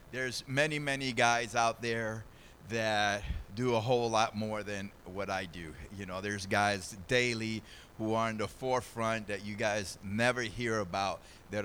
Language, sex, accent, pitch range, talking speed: English, male, American, 100-120 Hz, 170 wpm